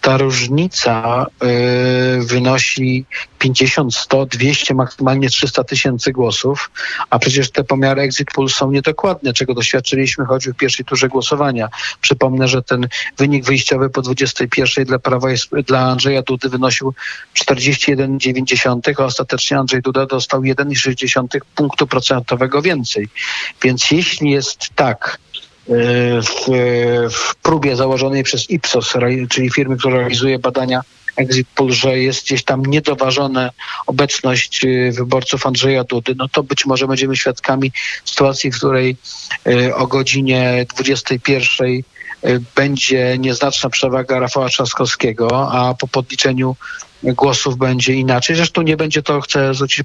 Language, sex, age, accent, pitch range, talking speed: Polish, male, 50-69, native, 125-135 Hz, 125 wpm